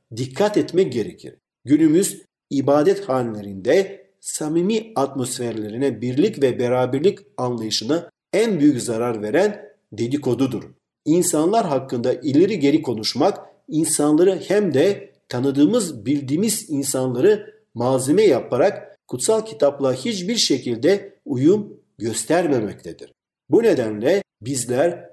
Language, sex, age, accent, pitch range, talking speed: Turkish, male, 50-69, native, 125-200 Hz, 95 wpm